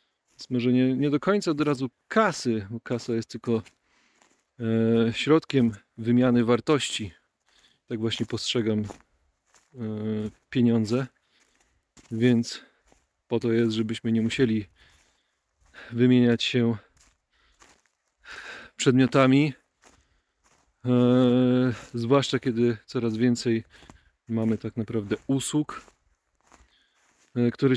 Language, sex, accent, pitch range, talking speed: Polish, male, native, 115-130 Hz, 80 wpm